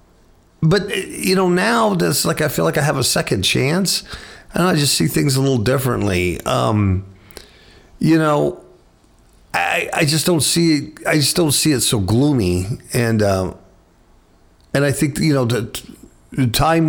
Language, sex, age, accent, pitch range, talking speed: English, male, 50-69, American, 100-145 Hz, 165 wpm